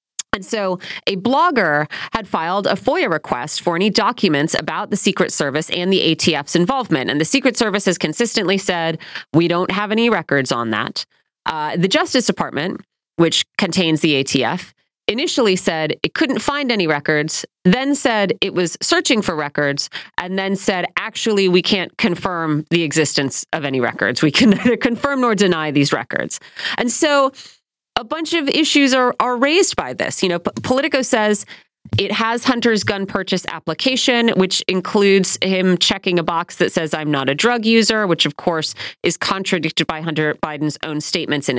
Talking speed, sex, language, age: 175 wpm, female, English, 30-49